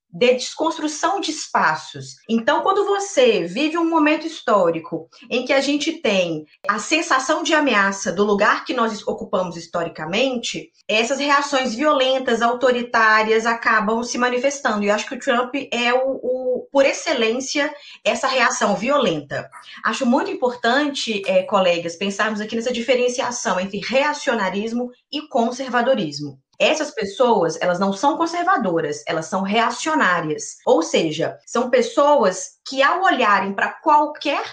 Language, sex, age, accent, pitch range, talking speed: Portuguese, female, 20-39, Brazilian, 205-275 Hz, 135 wpm